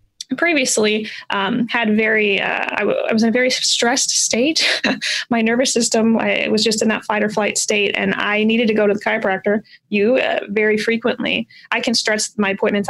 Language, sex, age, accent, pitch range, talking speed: English, female, 20-39, American, 205-230 Hz, 205 wpm